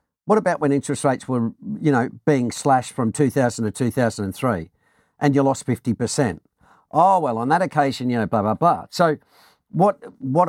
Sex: male